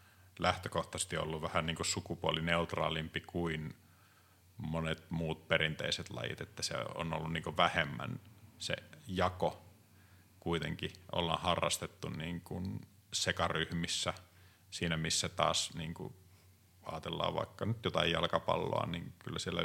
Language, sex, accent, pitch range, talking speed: Finnish, male, native, 85-100 Hz, 110 wpm